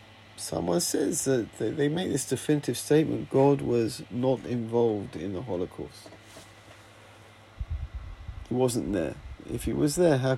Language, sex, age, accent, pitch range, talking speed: English, male, 40-59, British, 105-135 Hz, 135 wpm